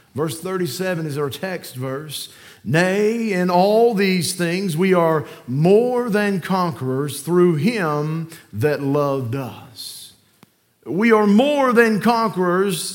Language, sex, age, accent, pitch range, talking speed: English, male, 40-59, American, 135-180 Hz, 120 wpm